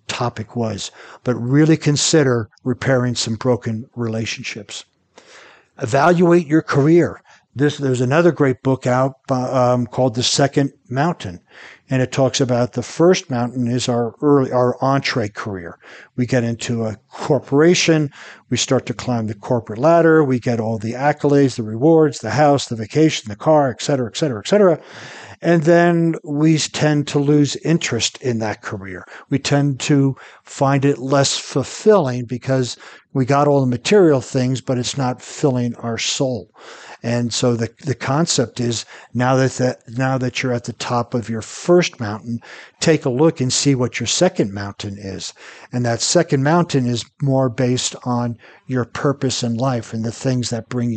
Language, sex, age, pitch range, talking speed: English, male, 60-79, 120-145 Hz, 165 wpm